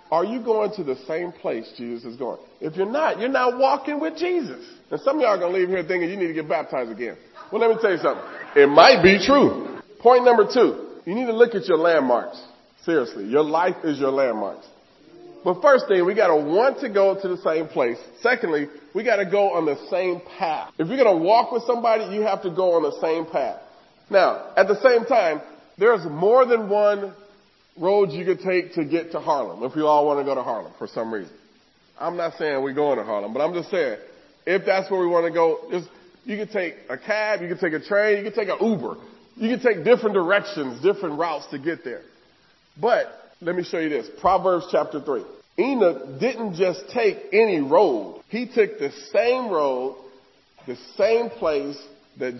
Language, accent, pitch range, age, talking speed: English, American, 170-250 Hz, 40-59, 220 wpm